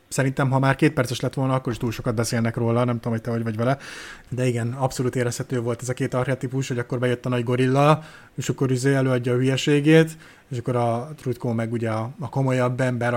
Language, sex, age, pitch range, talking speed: Hungarian, male, 20-39, 125-150 Hz, 230 wpm